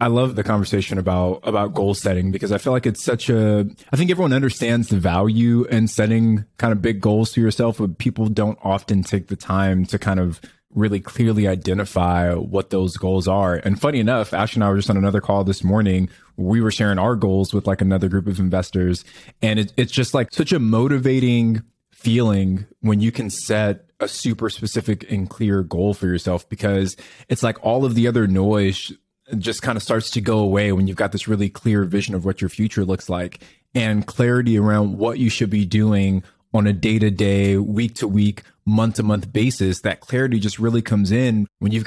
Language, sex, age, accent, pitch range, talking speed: English, male, 20-39, American, 95-115 Hz, 210 wpm